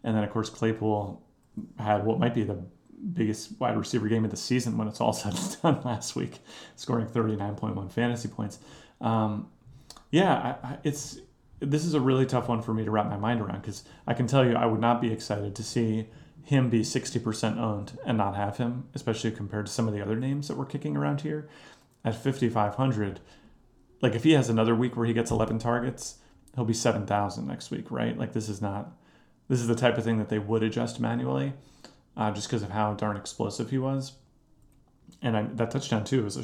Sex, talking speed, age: male, 215 wpm, 30-49